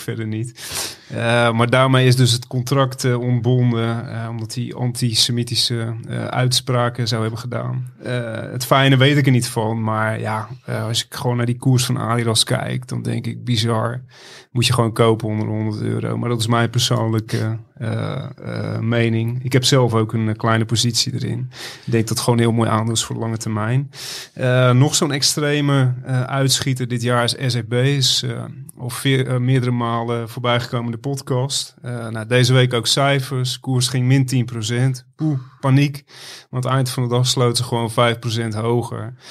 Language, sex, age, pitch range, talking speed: Dutch, male, 30-49, 115-130 Hz, 190 wpm